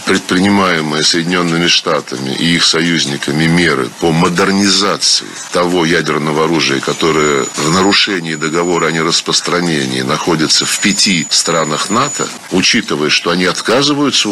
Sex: male